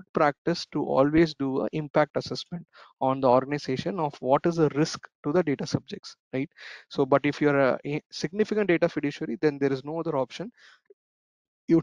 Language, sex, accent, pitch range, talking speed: English, male, Indian, 135-170 Hz, 180 wpm